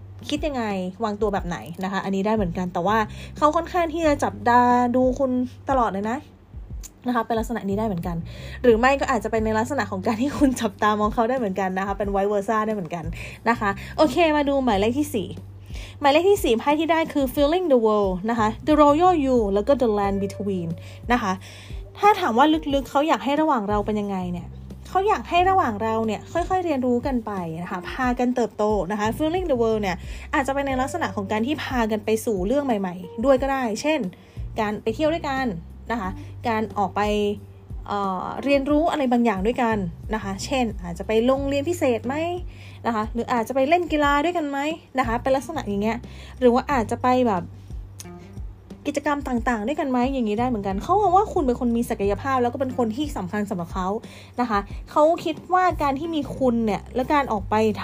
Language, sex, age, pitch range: Thai, female, 20-39, 205-280 Hz